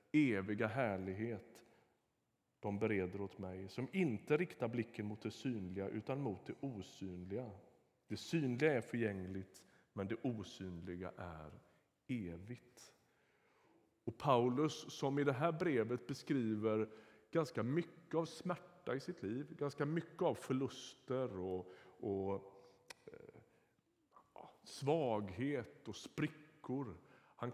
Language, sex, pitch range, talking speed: Swedish, male, 105-150 Hz, 115 wpm